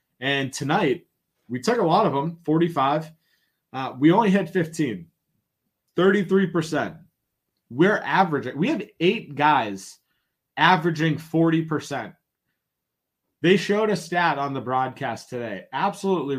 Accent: American